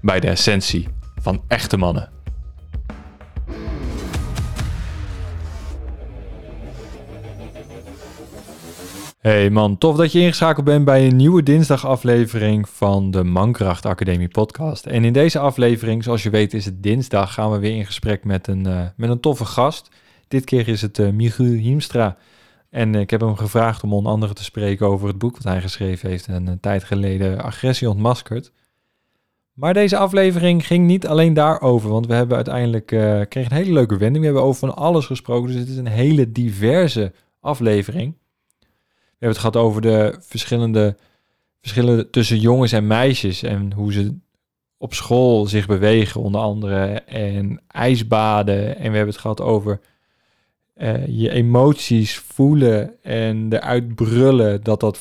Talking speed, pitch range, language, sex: 155 wpm, 100-125 Hz, Dutch, male